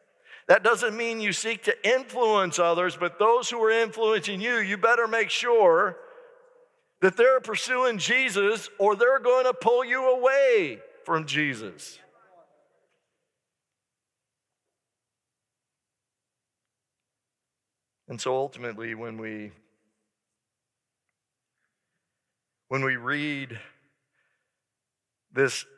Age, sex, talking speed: 50-69, male, 95 wpm